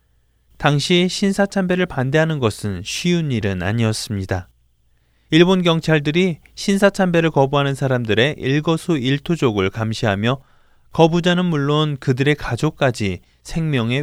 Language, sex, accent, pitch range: Korean, male, native, 110-170 Hz